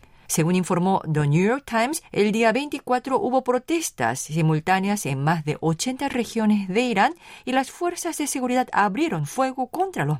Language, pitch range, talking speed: Spanish, 165-260 Hz, 165 wpm